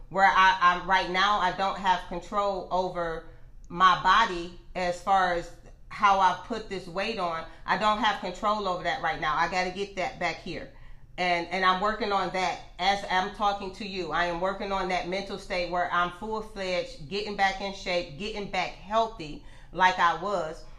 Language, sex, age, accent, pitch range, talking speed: English, female, 40-59, American, 175-200 Hz, 195 wpm